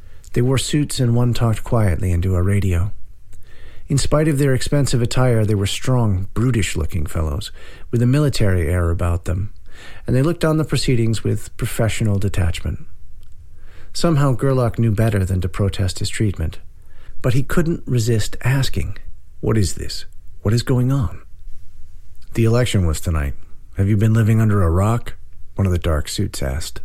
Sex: male